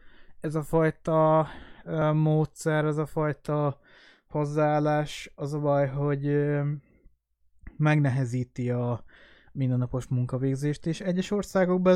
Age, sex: 20-39, male